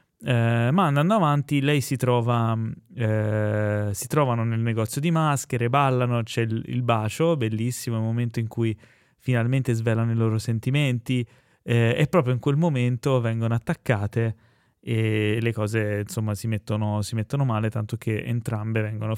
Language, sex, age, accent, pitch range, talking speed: Italian, male, 20-39, native, 110-125 Hz, 155 wpm